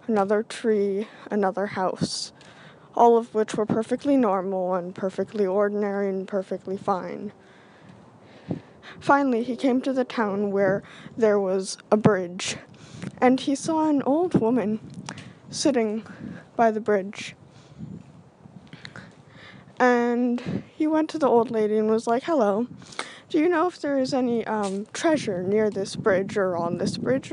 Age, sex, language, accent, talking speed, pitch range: 10-29, female, English, American, 140 wpm, 200-250 Hz